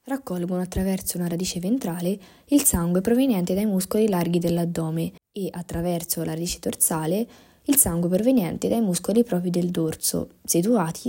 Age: 20-39